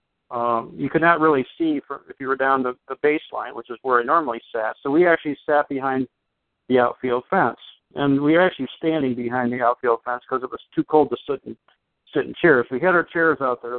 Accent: American